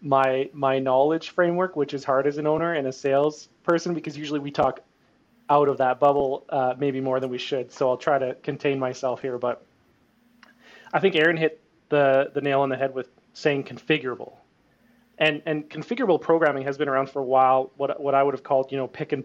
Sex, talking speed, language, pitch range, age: male, 215 wpm, English, 130-150 Hz, 30-49